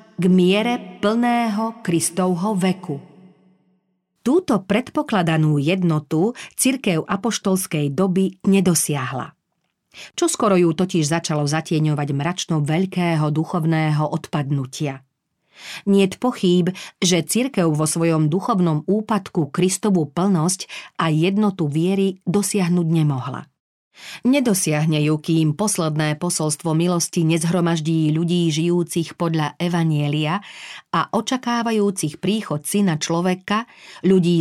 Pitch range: 160-195 Hz